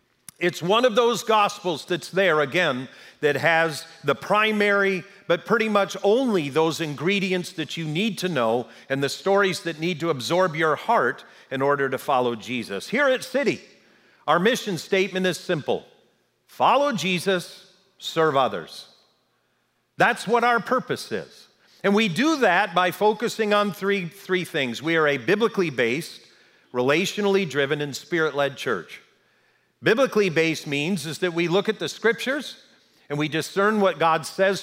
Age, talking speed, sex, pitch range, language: 50-69, 150 wpm, male, 155-200 Hz, English